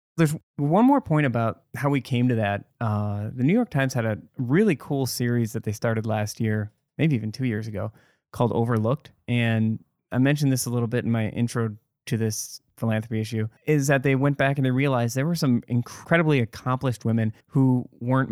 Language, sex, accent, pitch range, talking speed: English, male, American, 110-130 Hz, 205 wpm